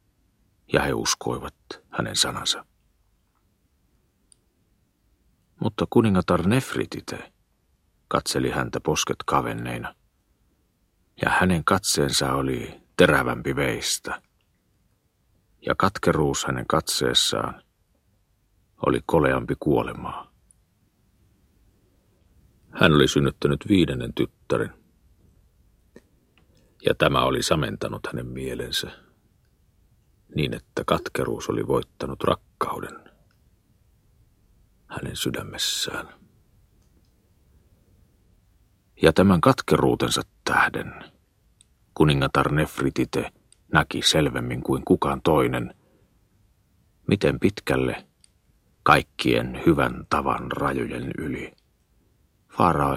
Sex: male